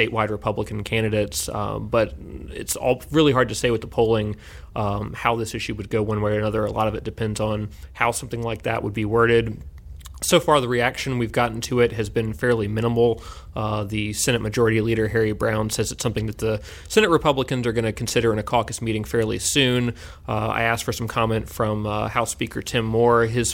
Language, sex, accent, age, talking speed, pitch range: English, male, American, 30-49, 220 wpm, 110-120 Hz